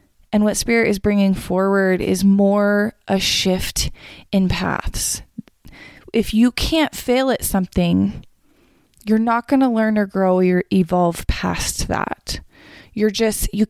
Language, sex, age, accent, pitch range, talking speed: English, female, 20-39, American, 185-220 Hz, 140 wpm